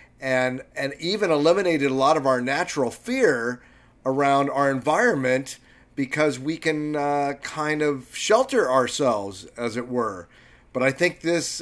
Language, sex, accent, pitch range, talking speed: English, male, American, 130-155 Hz, 145 wpm